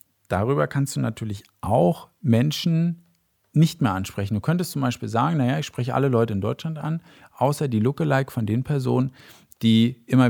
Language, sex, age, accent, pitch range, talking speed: German, male, 40-59, German, 110-135 Hz, 175 wpm